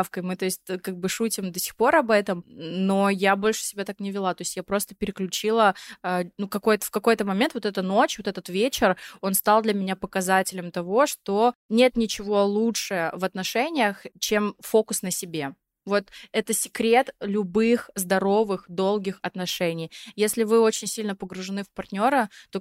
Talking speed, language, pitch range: 160 wpm, Russian, 185-215 Hz